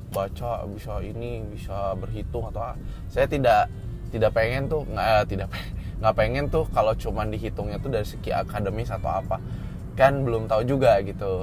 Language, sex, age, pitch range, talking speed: Indonesian, male, 20-39, 95-110 Hz, 160 wpm